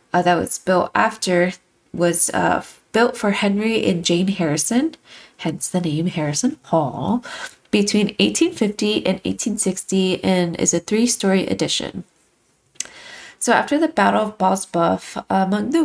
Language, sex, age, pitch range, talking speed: English, female, 20-39, 180-230 Hz, 135 wpm